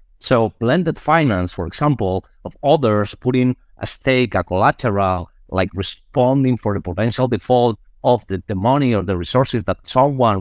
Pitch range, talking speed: 100-130 Hz, 155 wpm